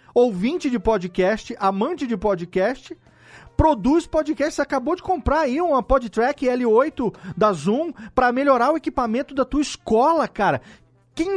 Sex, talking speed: male, 135 wpm